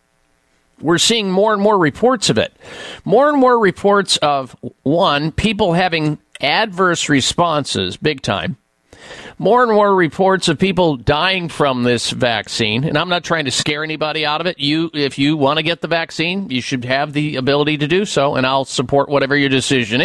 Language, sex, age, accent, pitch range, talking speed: English, male, 50-69, American, 130-175 Hz, 185 wpm